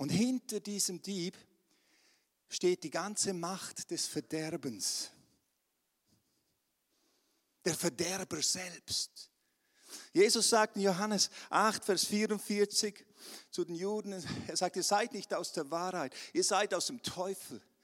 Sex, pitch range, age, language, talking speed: male, 185-255 Hz, 50-69, German, 120 wpm